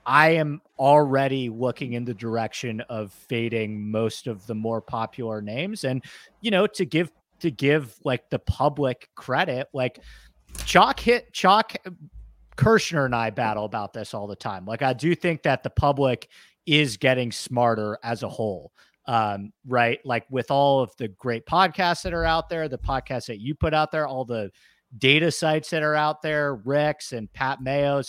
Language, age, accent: English, 30-49, American